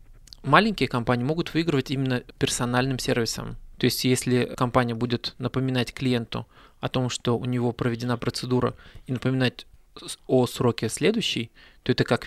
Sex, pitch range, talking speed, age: male, 120-130 Hz, 140 wpm, 20-39